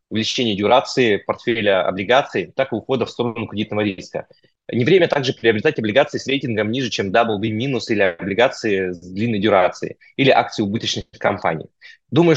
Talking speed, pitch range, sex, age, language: 150 wpm, 110-130 Hz, male, 20-39, Russian